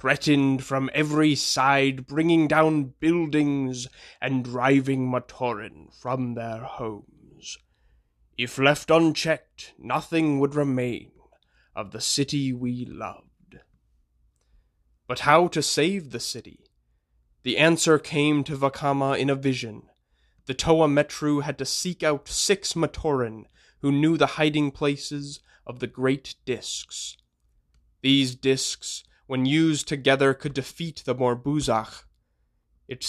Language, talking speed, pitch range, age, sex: English, 120 wpm, 120-145 Hz, 20-39, male